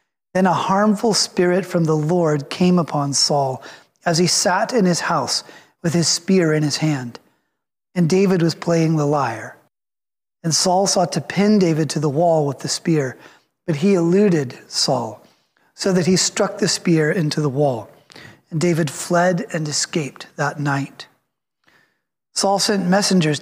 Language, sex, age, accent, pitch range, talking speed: English, male, 30-49, American, 150-185 Hz, 160 wpm